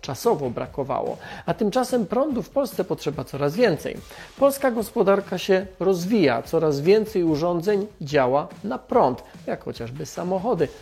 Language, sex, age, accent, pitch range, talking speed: Polish, male, 40-59, native, 160-220 Hz, 130 wpm